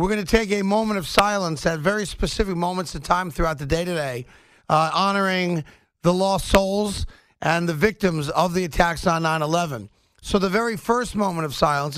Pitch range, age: 140-185 Hz, 50-69